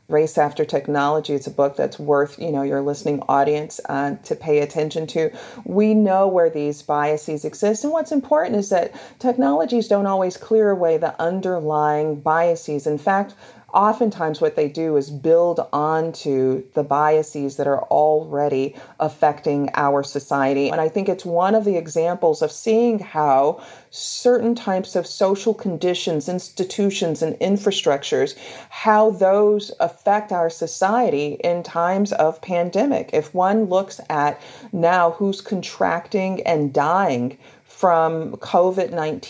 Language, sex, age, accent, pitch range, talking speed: English, female, 40-59, American, 150-200 Hz, 140 wpm